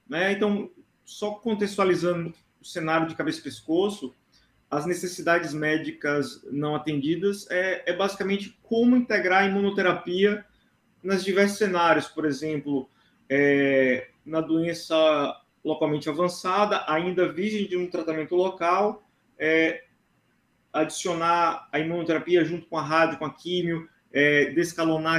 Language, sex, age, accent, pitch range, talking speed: Portuguese, male, 20-39, Brazilian, 150-185 Hz, 115 wpm